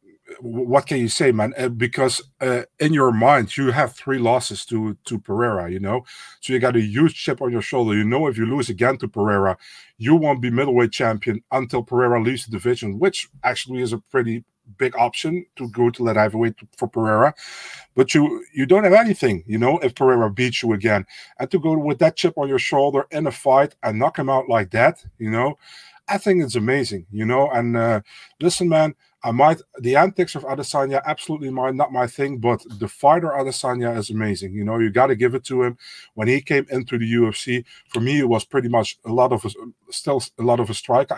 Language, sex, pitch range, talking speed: English, male, 110-140 Hz, 220 wpm